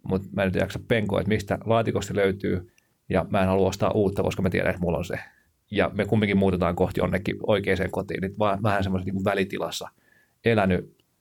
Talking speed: 205 wpm